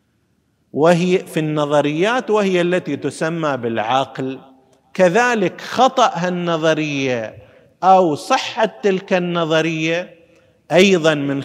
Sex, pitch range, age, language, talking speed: male, 150-200 Hz, 50-69, Arabic, 85 wpm